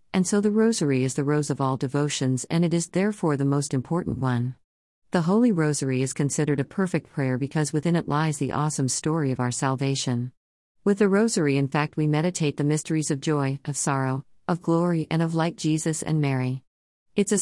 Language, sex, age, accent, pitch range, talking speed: Malayalam, female, 50-69, American, 130-165 Hz, 205 wpm